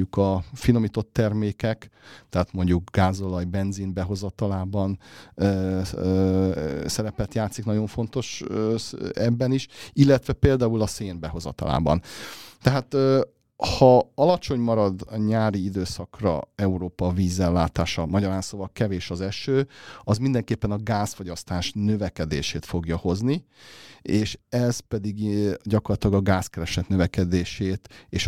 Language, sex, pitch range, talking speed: Hungarian, male, 90-115 Hz, 110 wpm